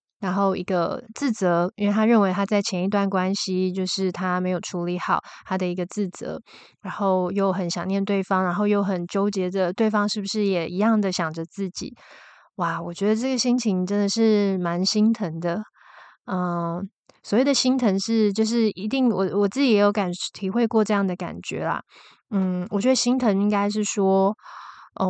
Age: 20-39